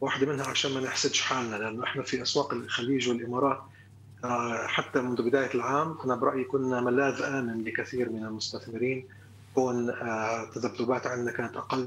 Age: 30-49